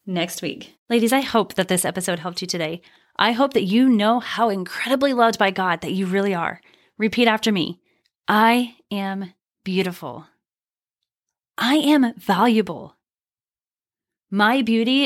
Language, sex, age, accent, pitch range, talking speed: English, female, 20-39, American, 205-285 Hz, 145 wpm